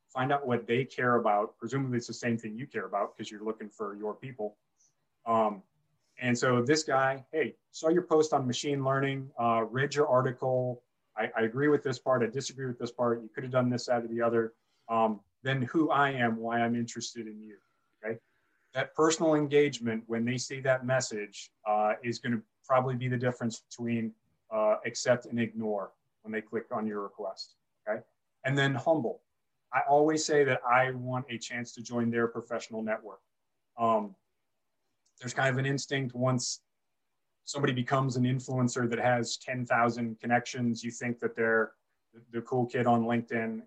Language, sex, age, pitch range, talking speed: English, male, 30-49, 115-130 Hz, 185 wpm